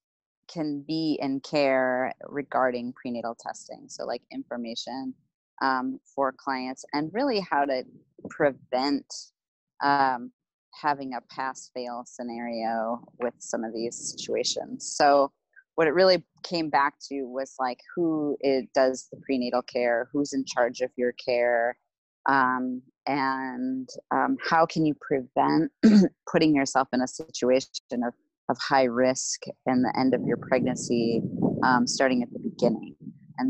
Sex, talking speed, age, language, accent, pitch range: female, 140 wpm, 30-49, English, American, 125-155 Hz